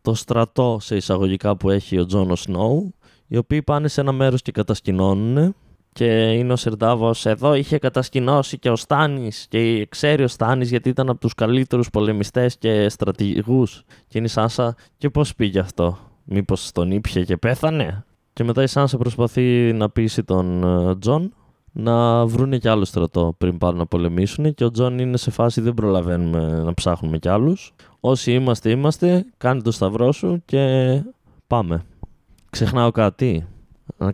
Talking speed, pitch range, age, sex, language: 165 wpm, 95-130 Hz, 20-39, male, Greek